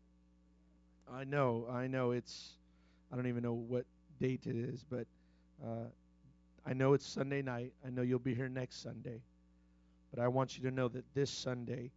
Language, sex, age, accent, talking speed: English, male, 30-49, American, 180 wpm